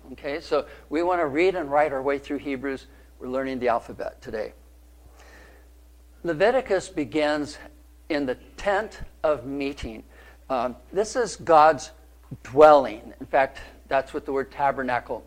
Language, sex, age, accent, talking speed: English, male, 50-69, American, 140 wpm